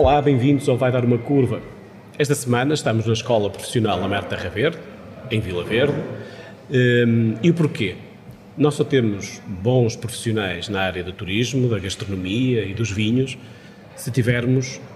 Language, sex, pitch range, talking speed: Portuguese, male, 105-125 Hz, 155 wpm